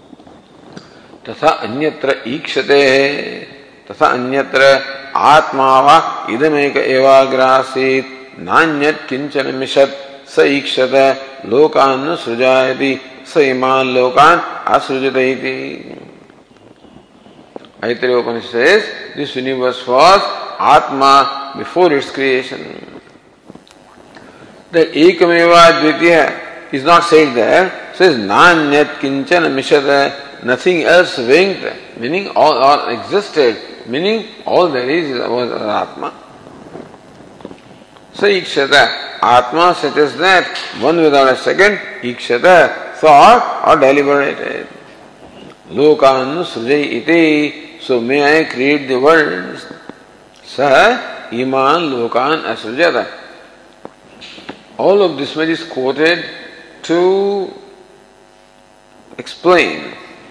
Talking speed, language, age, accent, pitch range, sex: 90 wpm, English, 50-69, Indian, 130-165 Hz, male